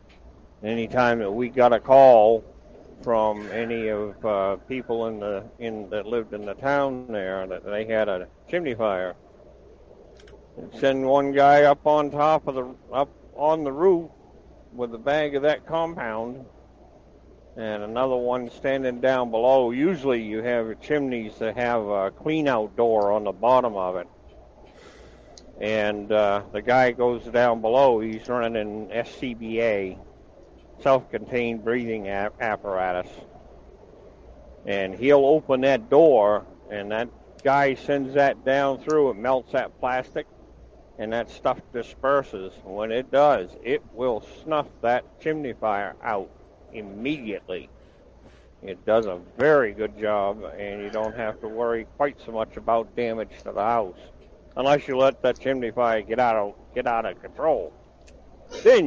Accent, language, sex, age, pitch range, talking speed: American, English, male, 60-79, 105-135 Hz, 145 wpm